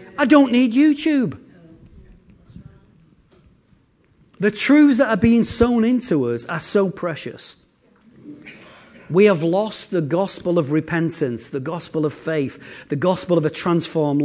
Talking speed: 130 wpm